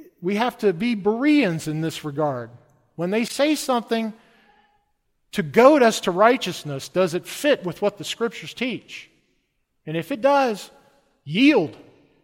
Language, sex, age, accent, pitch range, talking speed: English, male, 50-69, American, 155-220 Hz, 145 wpm